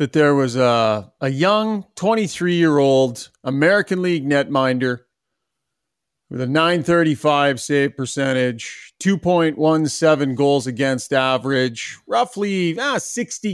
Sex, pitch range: male, 140-175 Hz